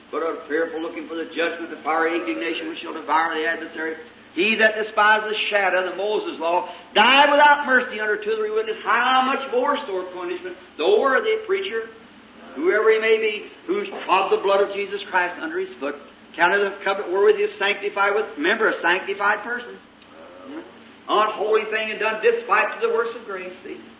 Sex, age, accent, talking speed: male, 50-69, American, 195 wpm